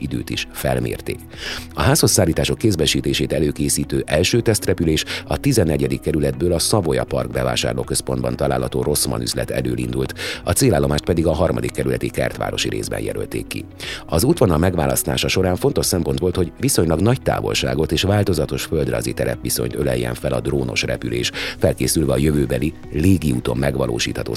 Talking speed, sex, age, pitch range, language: 140 wpm, male, 30-49, 65-90 Hz, Hungarian